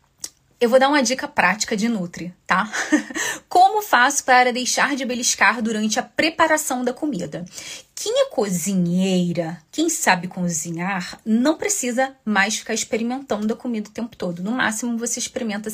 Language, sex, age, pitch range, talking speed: Portuguese, female, 20-39, 210-290 Hz, 155 wpm